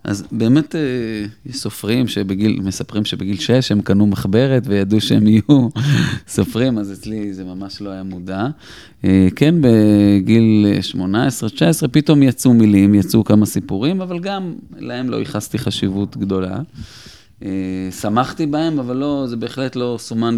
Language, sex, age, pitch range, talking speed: Hebrew, male, 30-49, 100-130 Hz, 130 wpm